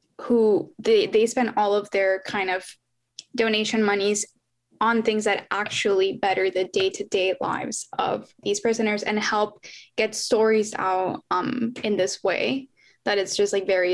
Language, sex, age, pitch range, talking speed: English, female, 10-29, 195-240 Hz, 155 wpm